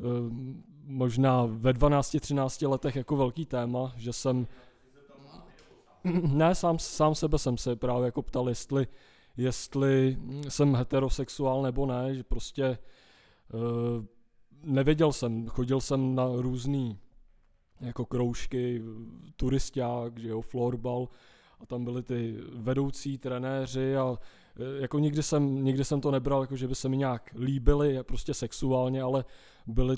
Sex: male